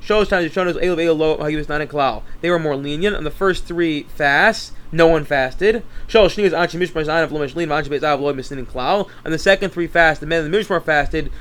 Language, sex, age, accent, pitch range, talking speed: English, male, 20-39, American, 155-185 Hz, 135 wpm